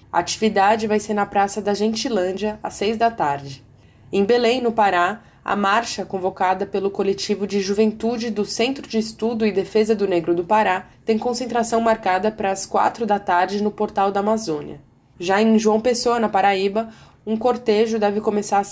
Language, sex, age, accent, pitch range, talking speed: Portuguese, female, 20-39, Brazilian, 190-220 Hz, 180 wpm